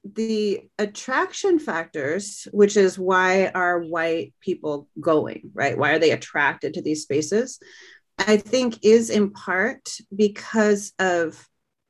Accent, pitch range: American, 170-215 Hz